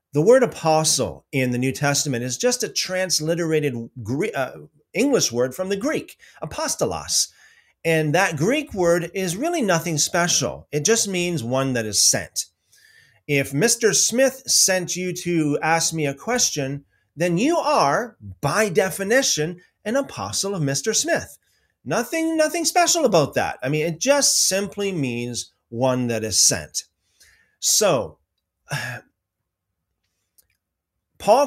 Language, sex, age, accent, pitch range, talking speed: English, male, 30-49, American, 140-200 Hz, 130 wpm